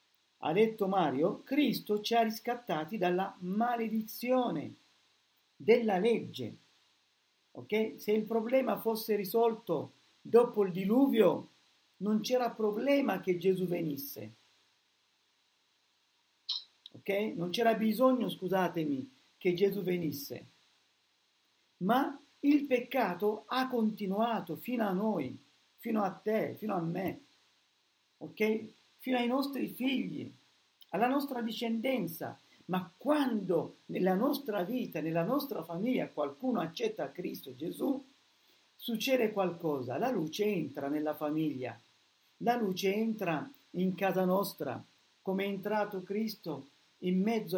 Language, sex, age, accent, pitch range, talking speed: Italian, male, 50-69, native, 185-235 Hz, 110 wpm